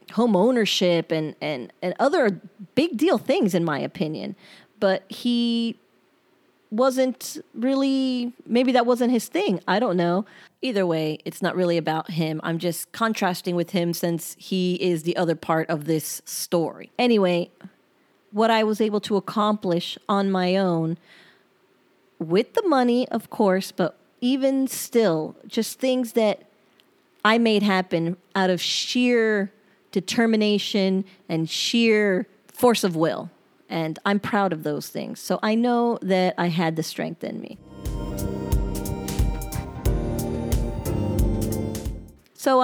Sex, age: female, 30-49